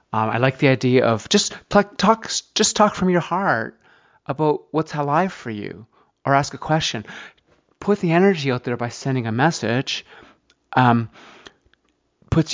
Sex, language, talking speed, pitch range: male, English, 160 wpm, 110-145 Hz